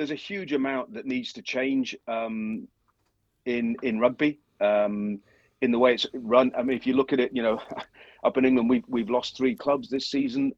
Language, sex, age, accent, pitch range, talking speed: English, male, 40-59, British, 110-155 Hz, 210 wpm